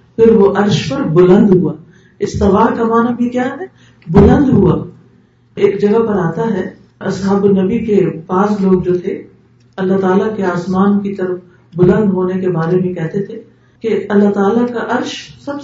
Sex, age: female, 50-69